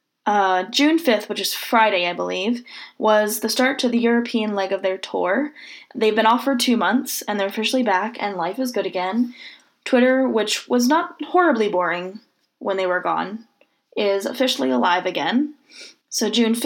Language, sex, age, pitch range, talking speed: English, female, 10-29, 190-240 Hz, 175 wpm